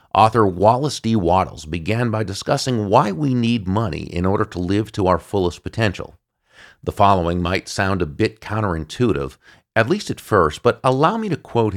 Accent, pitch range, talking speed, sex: American, 90-115 Hz, 180 wpm, male